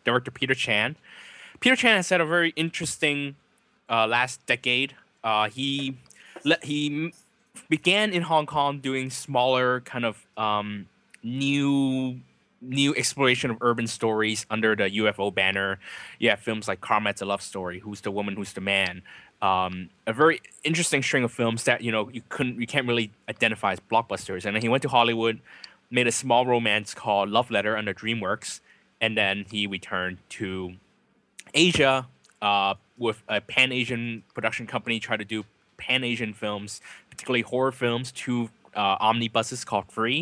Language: English